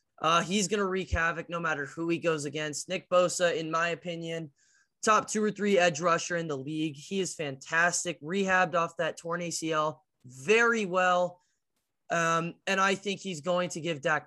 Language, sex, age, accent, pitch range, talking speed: English, male, 20-39, American, 160-190 Hz, 190 wpm